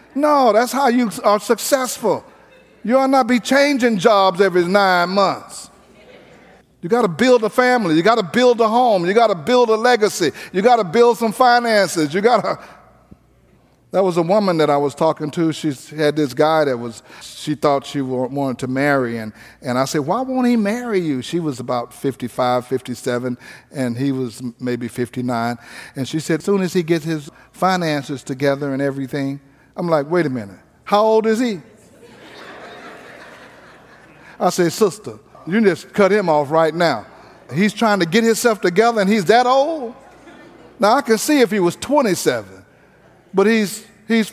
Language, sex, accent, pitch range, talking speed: English, male, American, 145-230 Hz, 185 wpm